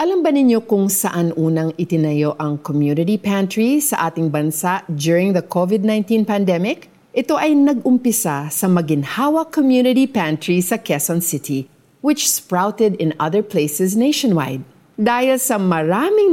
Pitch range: 160-250 Hz